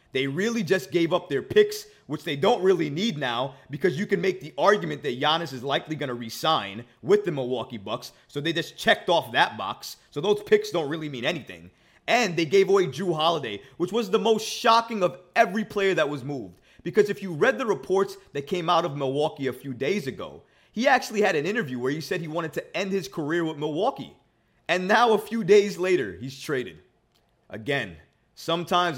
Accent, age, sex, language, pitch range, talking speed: American, 30-49, male, English, 135-200 Hz, 210 wpm